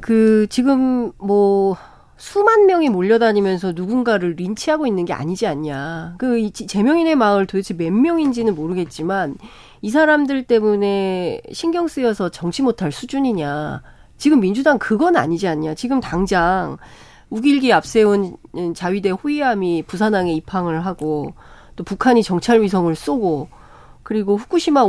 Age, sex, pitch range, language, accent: 40-59, female, 185-270 Hz, Korean, native